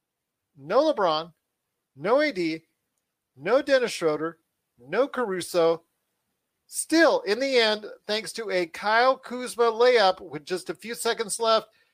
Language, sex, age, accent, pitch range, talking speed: English, male, 40-59, American, 170-240 Hz, 125 wpm